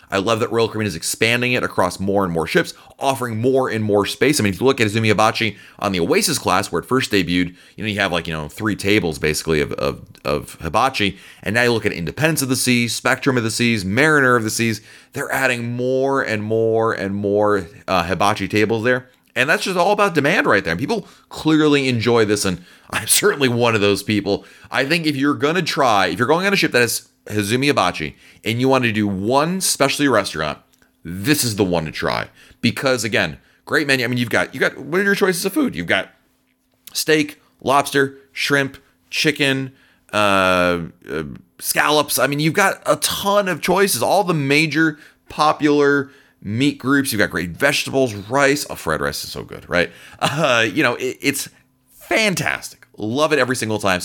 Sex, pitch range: male, 100-140 Hz